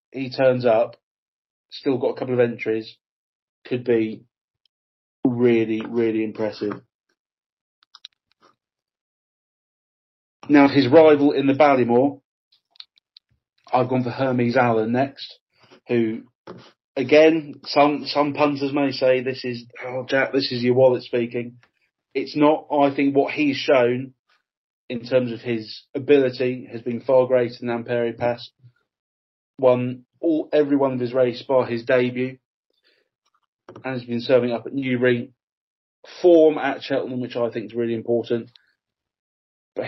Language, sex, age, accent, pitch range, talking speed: English, male, 30-49, British, 115-135 Hz, 135 wpm